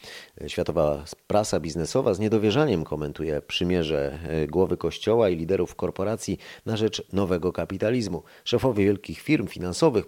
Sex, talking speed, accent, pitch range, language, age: male, 120 wpm, native, 90-120 Hz, Polish, 30-49